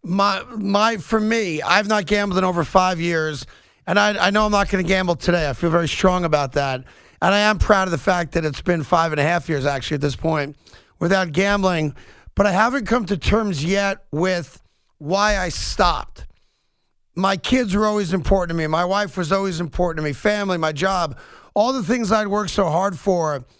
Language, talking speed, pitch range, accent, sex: English, 215 wpm, 170-210 Hz, American, male